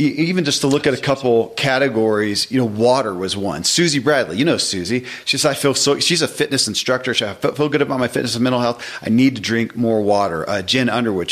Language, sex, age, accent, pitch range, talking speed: English, male, 40-59, American, 110-135 Hz, 250 wpm